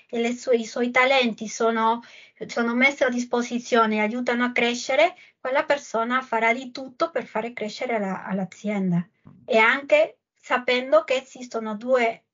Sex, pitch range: female, 215-255 Hz